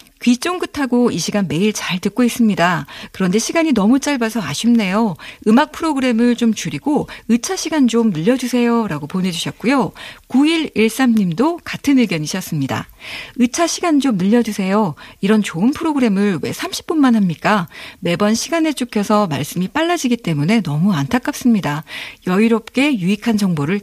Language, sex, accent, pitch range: Korean, female, native, 195-260 Hz